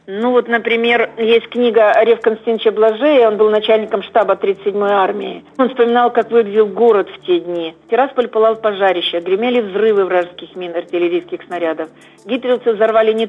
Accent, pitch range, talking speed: native, 200-245 Hz, 160 wpm